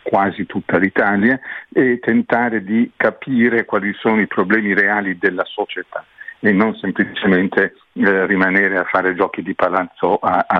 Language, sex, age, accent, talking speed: Italian, male, 50-69, native, 145 wpm